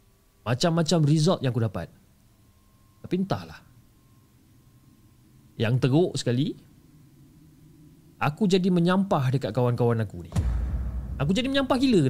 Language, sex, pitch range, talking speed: Malay, male, 105-155 Hz, 110 wpm